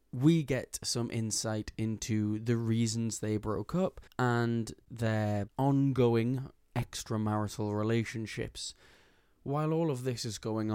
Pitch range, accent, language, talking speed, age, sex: 105-120 Hz, British, English, 115 wpm, 20-39, male